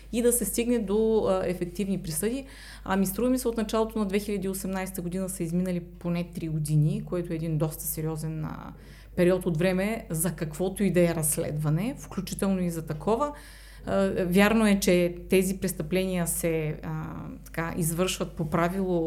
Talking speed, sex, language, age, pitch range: 165 wpm, female, Bulgarian, 30-49, 175-220 Hz